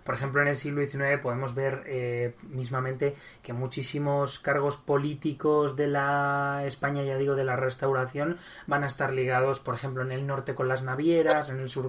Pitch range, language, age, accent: 125-150 Hz, Spanish, 20-39, Spanish